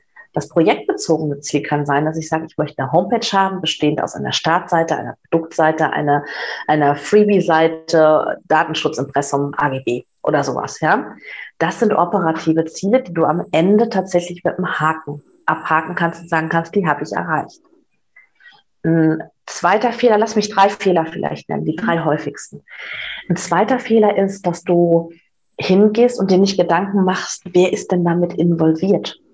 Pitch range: 155-195 Hz